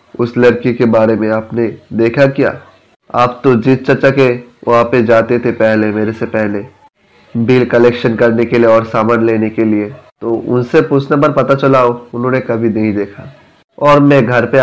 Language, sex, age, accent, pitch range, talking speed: Hindi, male, 20-39, native, 115-130 Hz, 185 wpm